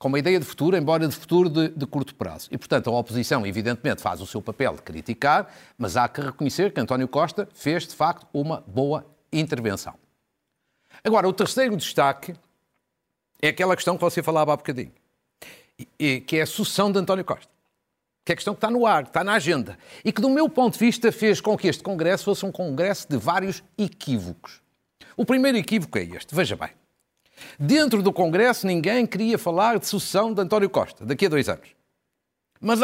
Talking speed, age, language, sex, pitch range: 200 wpm, 50-69, Portuguese, male, 145-205 Hz